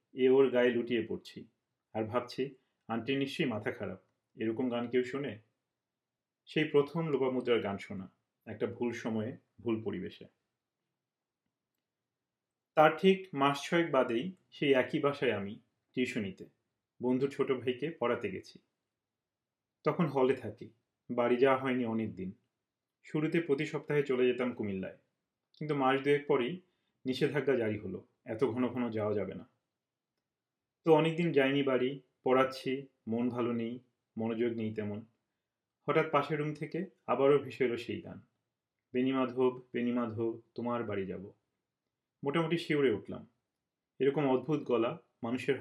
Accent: native